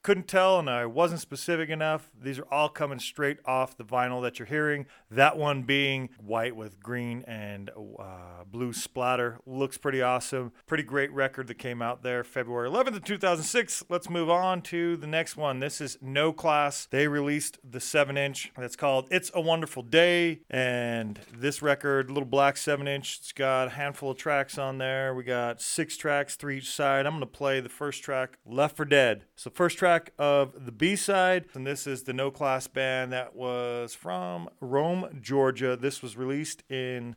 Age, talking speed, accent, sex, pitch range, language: 40-59, 190 wpm, American, male, 125-145 Hz, English